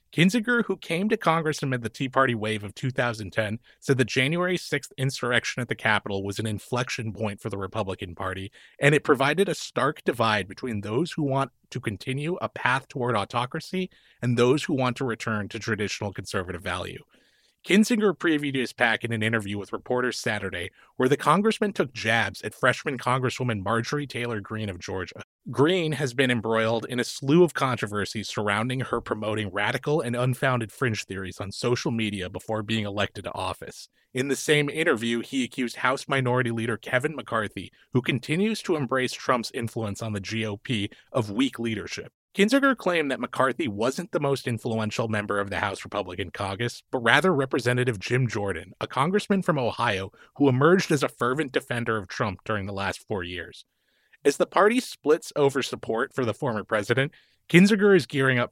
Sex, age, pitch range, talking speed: male, 30-49, 110-140 Hz, 180 wpm